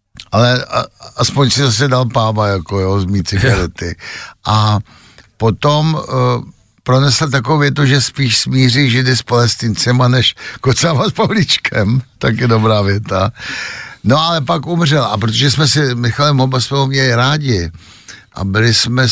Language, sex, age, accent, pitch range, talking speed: Czech, male, 60-79, native, 100-125 Hz, 140 wpm